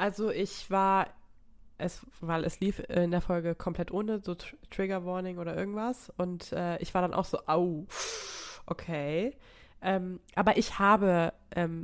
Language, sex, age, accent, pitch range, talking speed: German, female, 20-39, German, 170-195 Hz, 145 wpm